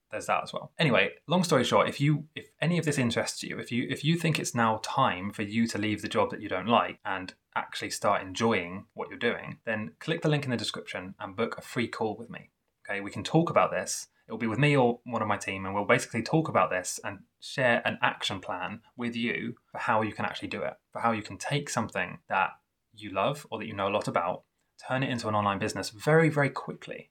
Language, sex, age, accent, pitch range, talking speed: English, male, 20-39, British, 105-140 Hz, 255 wpm